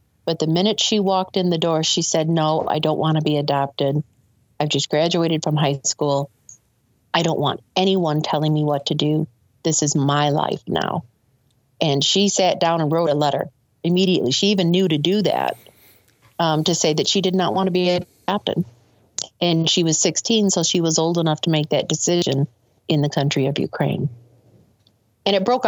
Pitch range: 140-190 Hz